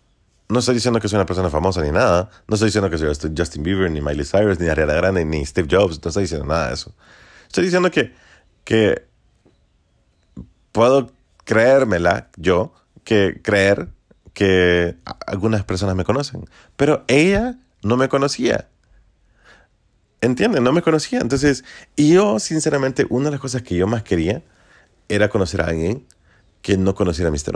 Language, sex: Spanish, male